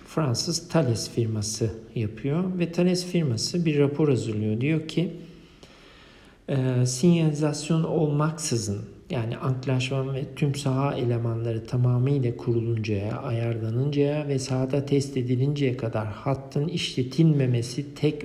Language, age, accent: Turkish, 60-79, native